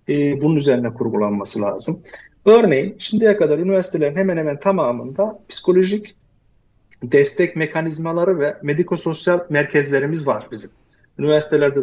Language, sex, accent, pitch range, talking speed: Turkish, male, native, 145-195 Hz, 100 wpm